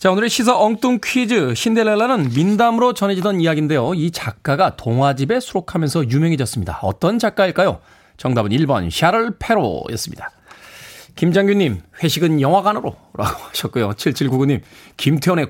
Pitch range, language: 125-200 Hz, Korean